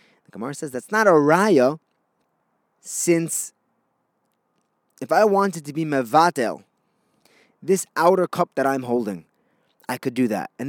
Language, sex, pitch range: English, male, 130-185 Hz